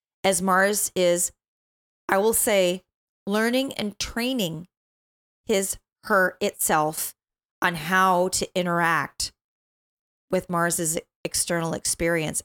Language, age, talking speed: English, 30-49, 95 wpm